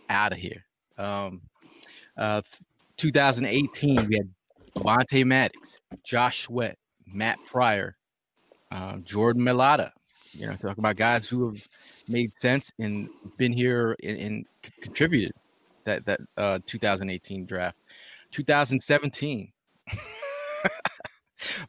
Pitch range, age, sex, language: 110-150 Hz, 20-39, male, English